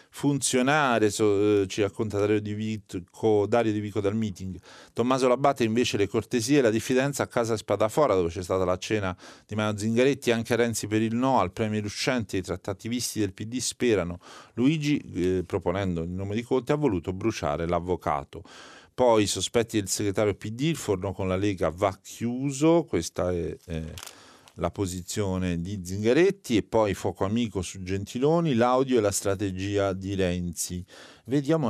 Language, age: Italian, 40-59